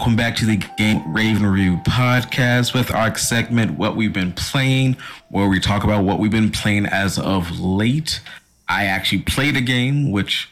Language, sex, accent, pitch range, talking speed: English, male, American, 100-125 Hz, 185 wpm